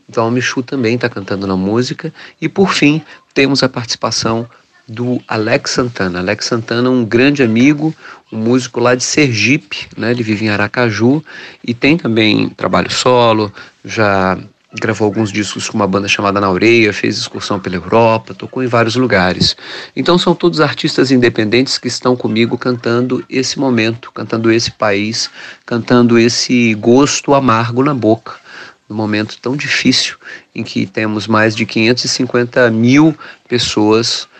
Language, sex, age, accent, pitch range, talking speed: Portuguese, male, 40-59, Brazilian, 110-130 Hz, 155 wpm